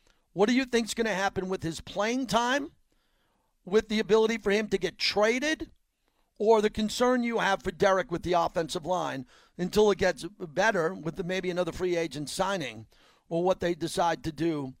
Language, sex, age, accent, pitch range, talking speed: English, male, 40-59, American, 180-225 Hz, 185 wpm